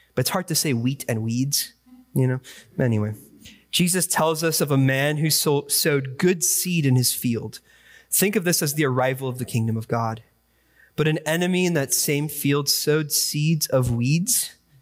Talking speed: 185 wpm